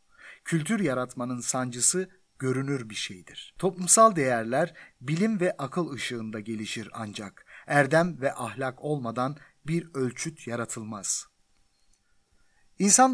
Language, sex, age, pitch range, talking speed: Turkish, male, 50-69, 125-175 Hz, 100 wpm